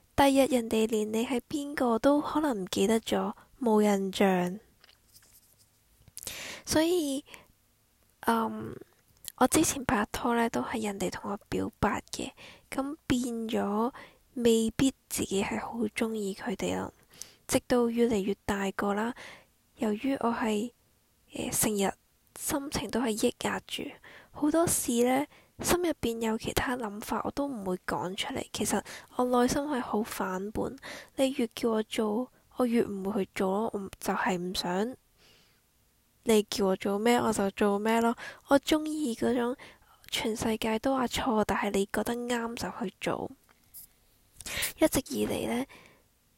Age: 10-29